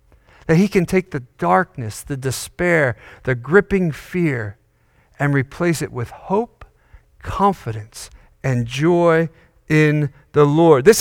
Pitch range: 120-185 Hz